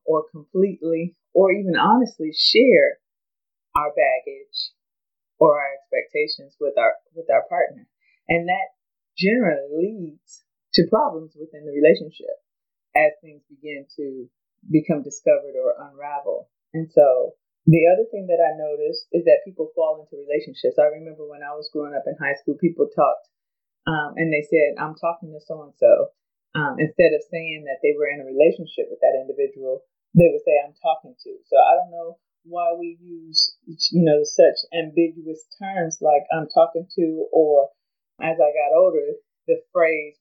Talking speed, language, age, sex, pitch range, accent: 165 wpm, English, 30-49, female, 155-250 Hz, American